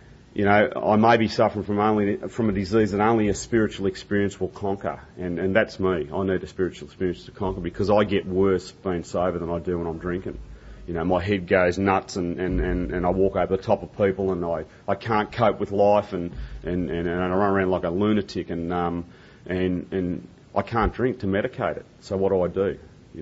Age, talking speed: 30-49, 235 wpm